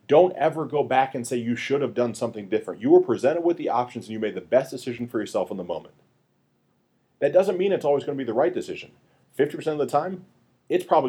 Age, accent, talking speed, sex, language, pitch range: 30-49, American, 250 wpm, male, English, 125-185 Hz